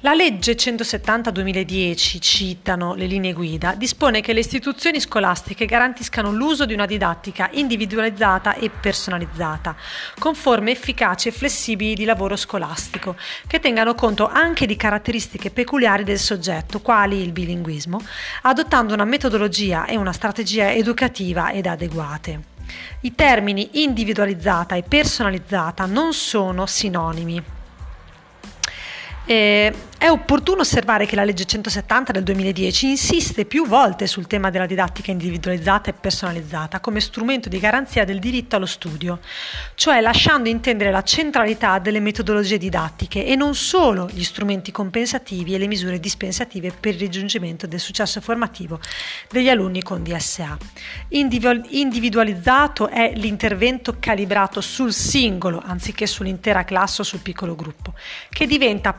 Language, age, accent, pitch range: Italian, 30-49, native, 190-235 Hz